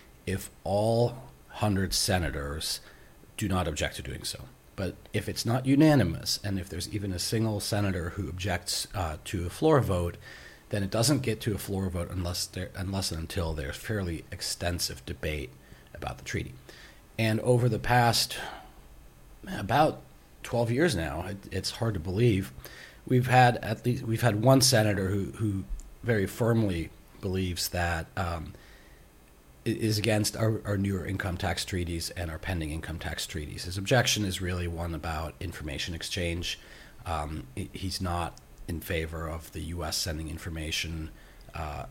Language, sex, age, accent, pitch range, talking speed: English, male, 40-59, American, 80-110 Hz, 155 wpm